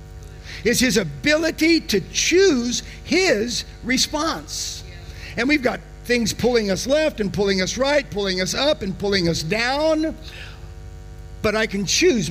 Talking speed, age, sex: 140 wpm, 50-69, male